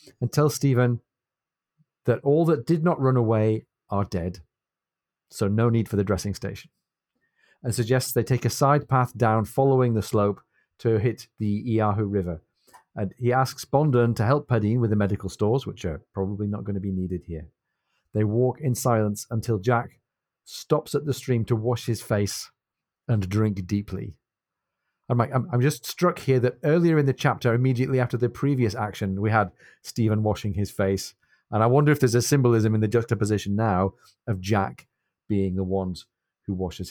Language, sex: English, male